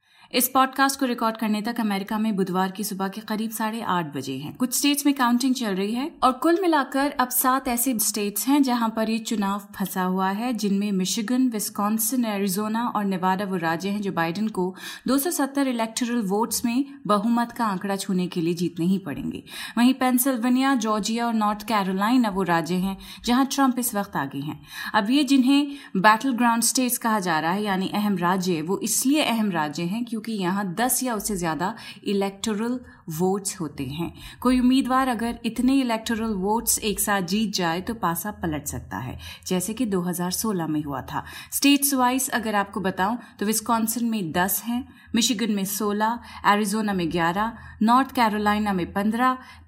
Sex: female